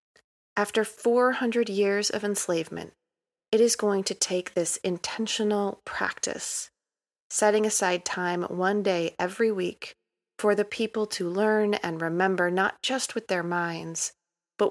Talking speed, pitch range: 135 wpm, 180-215 Hz